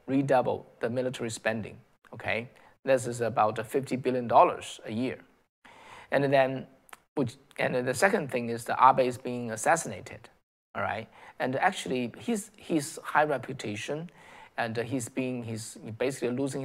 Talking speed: 140 wpm